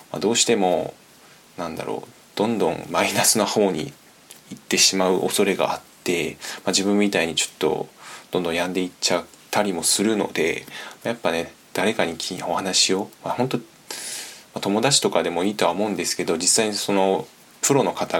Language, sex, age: Japanese, male, 20-39